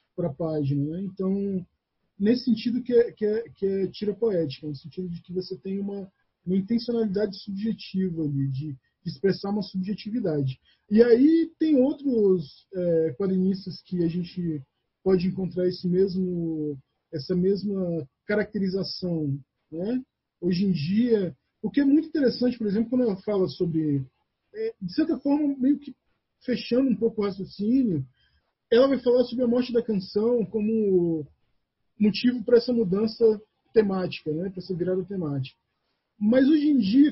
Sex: male